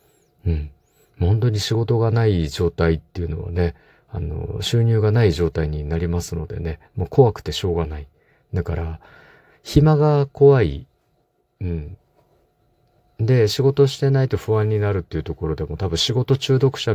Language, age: Japanese, 50-69